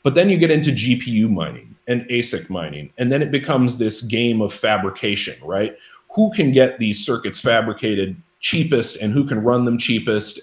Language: English